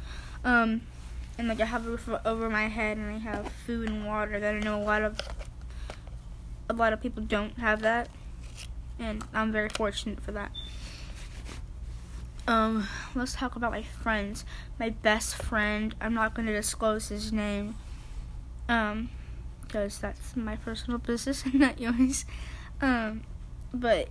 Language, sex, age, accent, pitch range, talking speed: English, female, 10-29, American, 200-230 Hz, 155 wpm